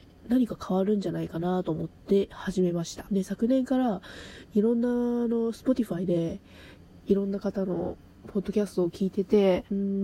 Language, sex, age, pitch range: Japanese, female, 20-39, 175-215 Hz